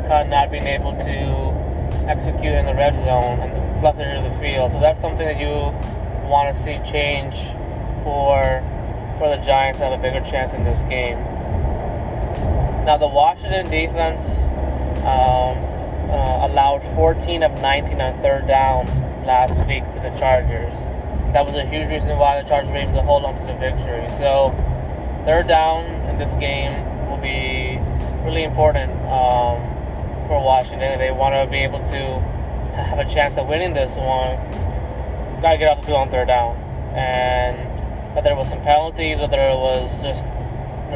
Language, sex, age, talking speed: English, male, 20-39, 175 wpm